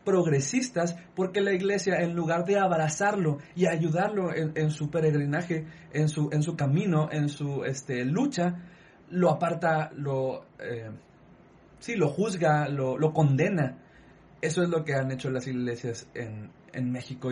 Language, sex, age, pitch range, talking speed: Spanish, male, 30-49, 140-180 Hz, 150 wpm